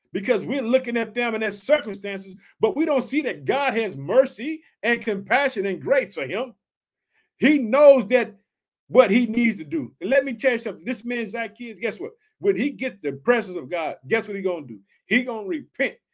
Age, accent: 50-69, American